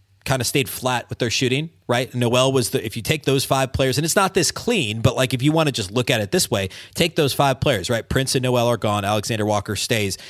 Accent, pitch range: American, 110-145 Hz